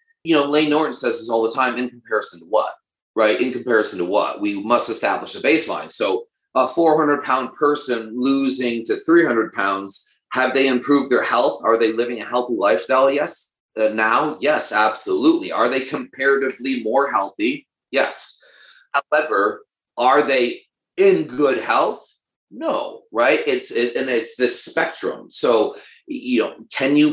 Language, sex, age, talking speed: English, male, 30-49, 165 wpm